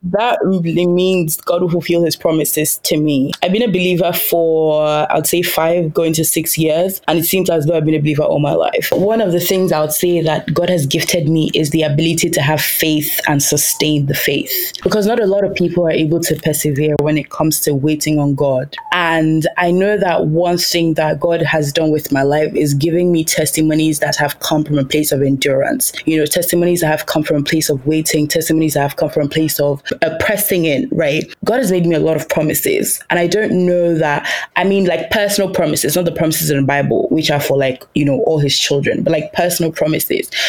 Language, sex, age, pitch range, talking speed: English, female, 20-39, 150-175 Hz, 235 wpm